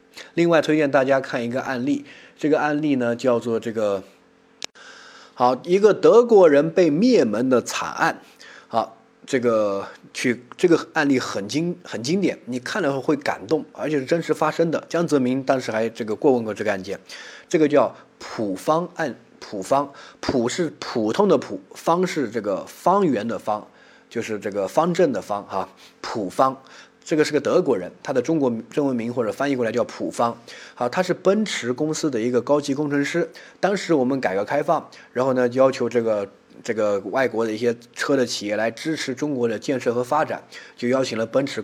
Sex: male